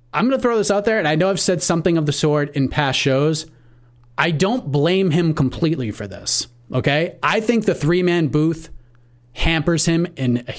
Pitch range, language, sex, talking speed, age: 135-180 Hz, English, male, 205 wpm, 30-49